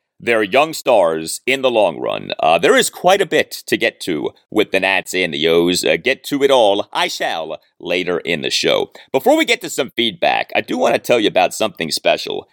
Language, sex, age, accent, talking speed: English, male, 40-59, American, 230 wpm